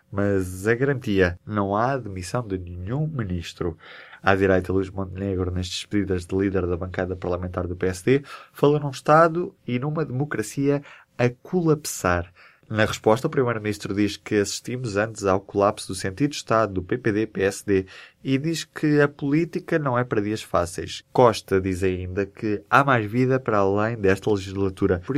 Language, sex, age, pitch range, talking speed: Portuguese, male, 20-39, 95-125 Hz, 160 wpm